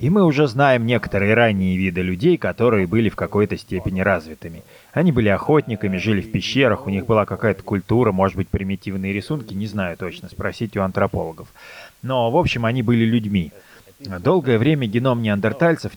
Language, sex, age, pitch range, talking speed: Russian, male, 20-39, 100-130 Hz, 170 wpm